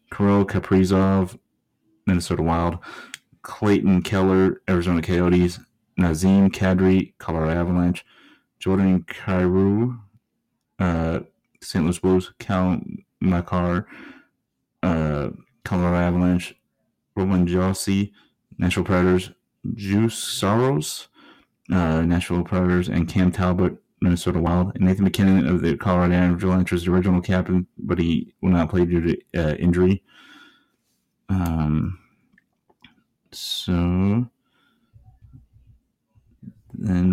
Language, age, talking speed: English, 30-49, 100 wpm